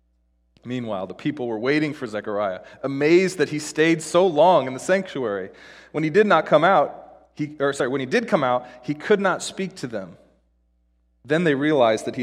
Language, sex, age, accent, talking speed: English, male, 30-49, American, 190 wpm